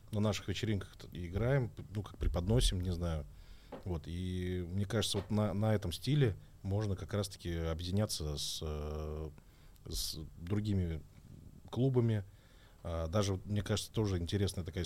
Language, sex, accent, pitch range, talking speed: Russian, male, native, 80-105 Hz, 135 wpm